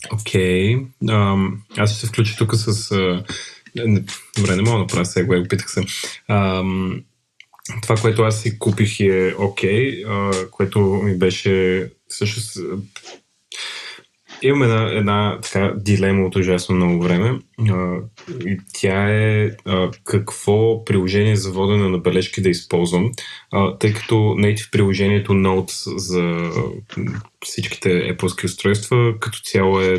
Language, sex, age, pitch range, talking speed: Bulgarian, male, 20-39, 95-110 Hz, 130 wpm